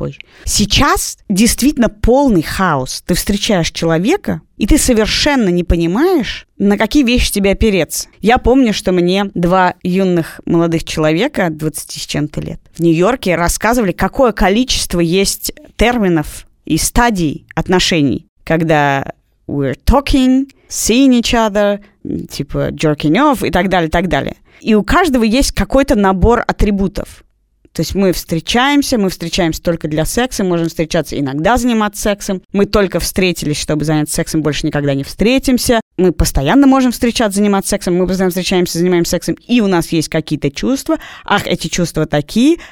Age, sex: 20-39, female